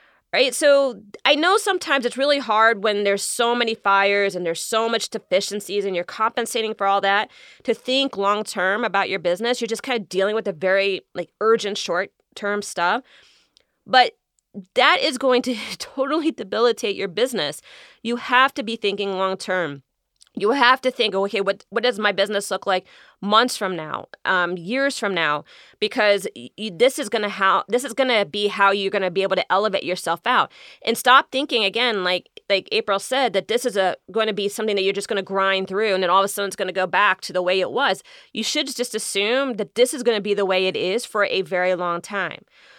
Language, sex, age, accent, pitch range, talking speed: English, female, 30-49, American, 195-245 Hz, 215 wpm